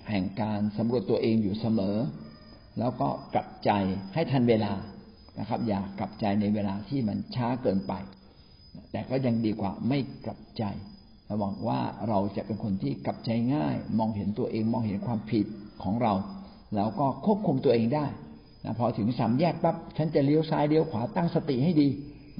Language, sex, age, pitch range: Thai, male, 60-79, 105-155 Hz